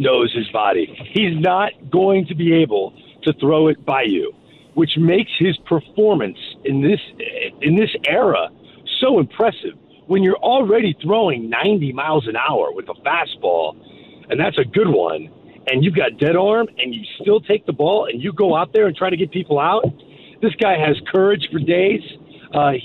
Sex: male